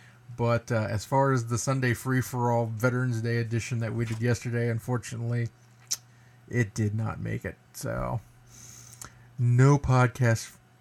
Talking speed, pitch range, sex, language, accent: 135 wpm, 115-140 Hz, male, English, American